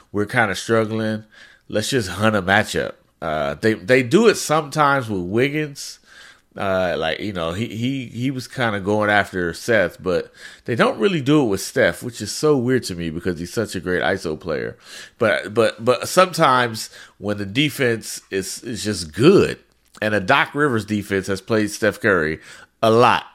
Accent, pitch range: American, 100-140 Hz